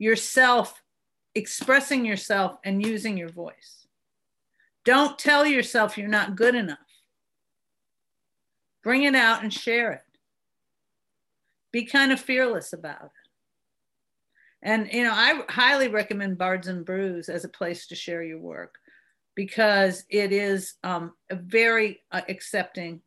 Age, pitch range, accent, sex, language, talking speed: 50-69, 190-250 Hz, American, female, English, 125 wpm